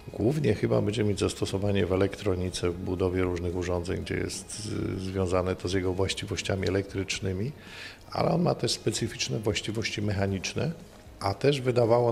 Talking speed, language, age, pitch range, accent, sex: 145 wpm, Polish, 50-69, 95-110 Hz, native, male